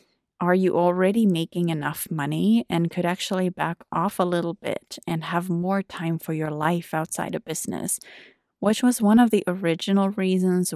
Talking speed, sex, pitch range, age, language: 175 wpm, female, 160-190 Hz, 30-49, English